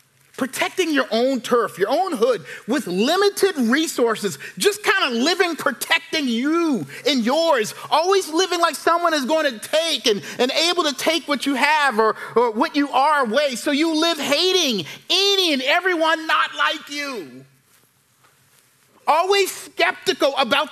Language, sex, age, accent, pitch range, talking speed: English, male, 40-59, American, 230-345 Hz, 155 wpm